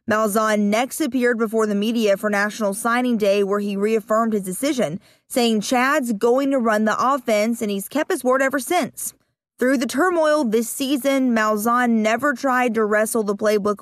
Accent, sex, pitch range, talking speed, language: American, female, 215-270 Hz, 180 wpm, English